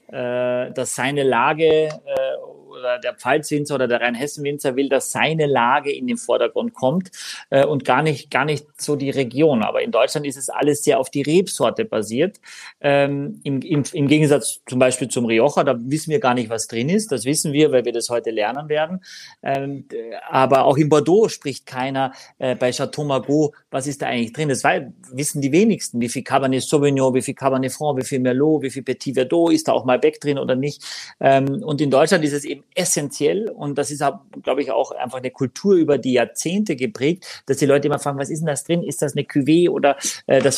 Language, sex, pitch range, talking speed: German, male, 130-155 Hz, 215 wpm